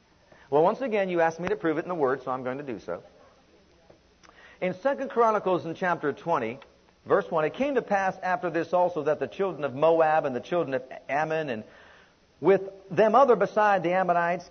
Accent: American